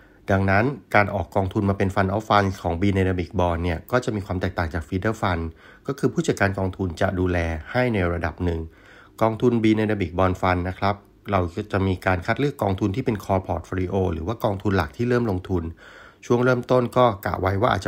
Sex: male